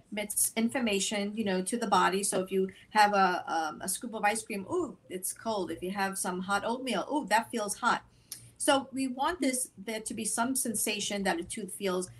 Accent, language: American, English